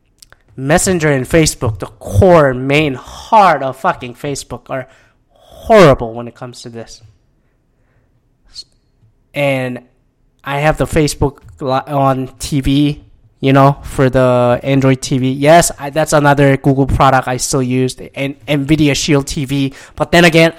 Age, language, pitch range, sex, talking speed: 20-39, English, 130-165 Hz, male, 130 wpm